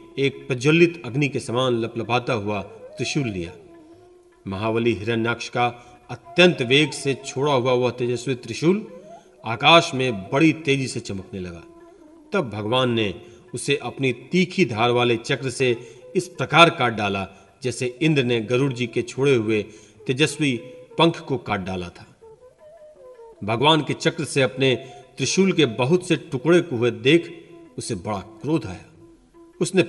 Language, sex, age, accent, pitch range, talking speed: Hindi, male, 40-59, native, 120-160 Hz, 145 wpm